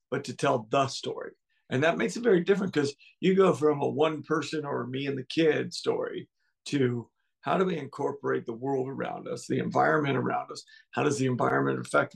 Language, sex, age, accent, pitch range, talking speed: English, male, 50-69, American, 130-155 Hz, 205 wpm